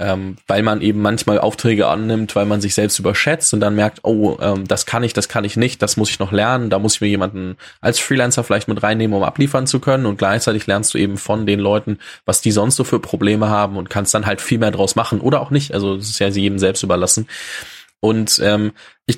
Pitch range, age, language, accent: 100-125 Hz, 10-29, German, German